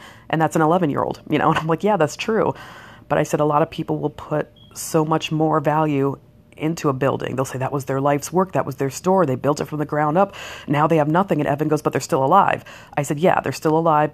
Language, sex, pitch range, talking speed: English, female, 140-165 Hz, 270 wpm